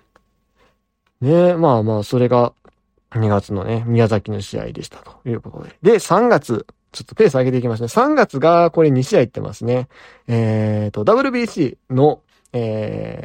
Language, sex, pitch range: Japanese, male, 115-165 Hz